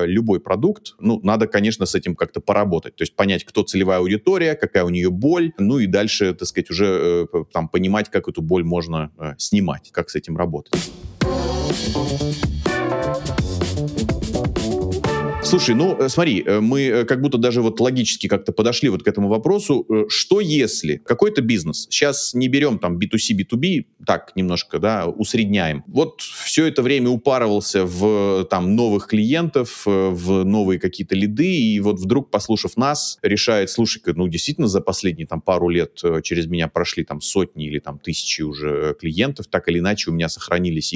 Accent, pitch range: native, 85-115 Hz